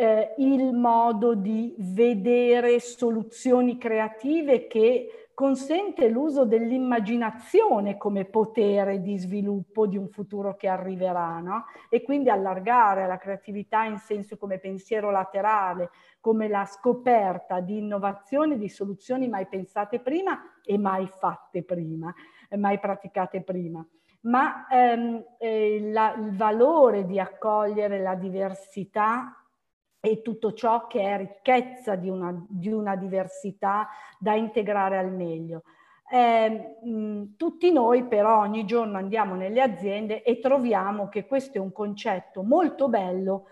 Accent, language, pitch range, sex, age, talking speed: native, Italian, 195-245 Hz, female, 50-69, 125 wpm